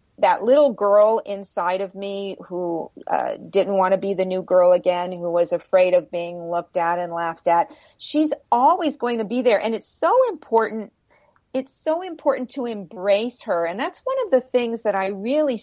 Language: English